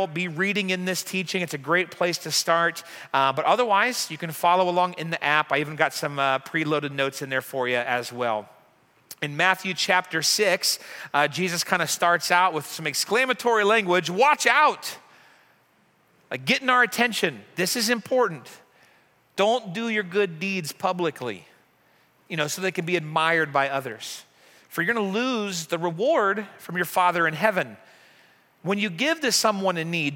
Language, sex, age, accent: English, male, 40-59, American